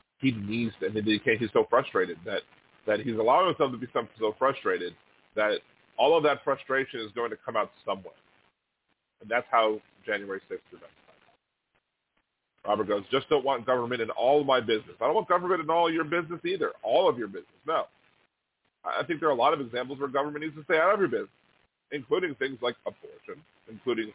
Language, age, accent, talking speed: English, 30-49, American, 205 wpm